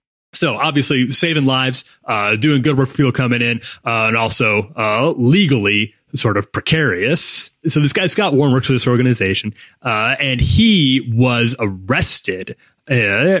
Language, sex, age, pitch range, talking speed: English, male, 30-49, 110-140 Hz, 155 wpm